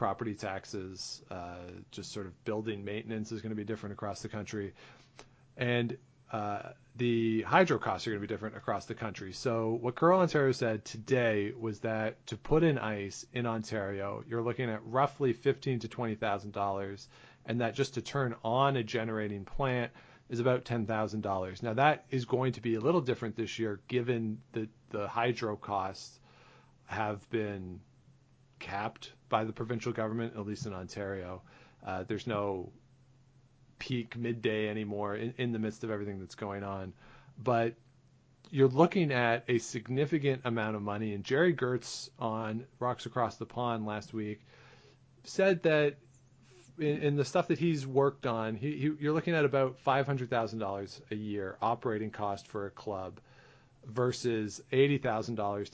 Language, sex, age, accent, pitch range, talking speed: English, male, 40-59, American, 105-130 Hz, 160 wpm